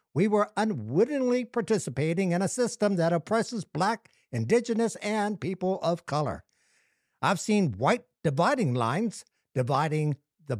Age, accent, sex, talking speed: 60-79, American, male, 125 wpm